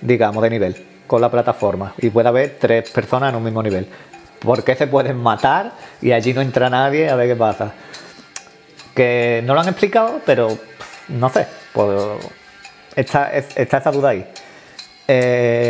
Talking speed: 165 wpm